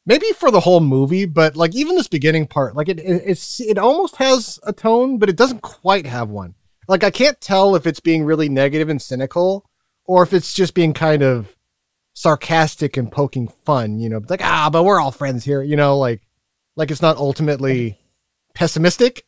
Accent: American